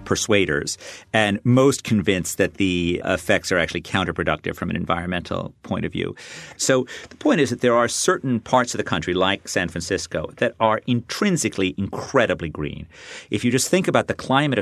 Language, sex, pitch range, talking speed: English, male, 85-120 Hz, 175 wpm